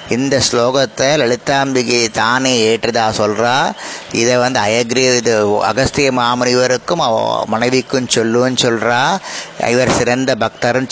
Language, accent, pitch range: Tamil, native, 120-145 Hz